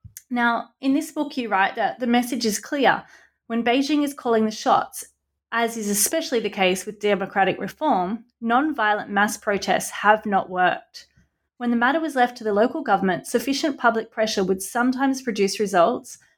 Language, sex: English, female